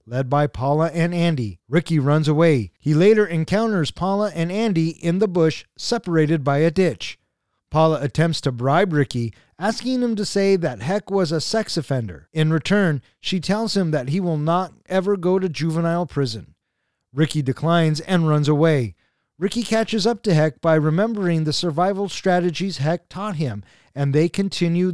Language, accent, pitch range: English, American, 145-180 Hz